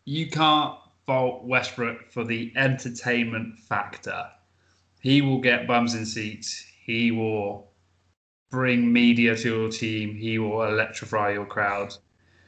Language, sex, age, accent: English, male, 20-39, British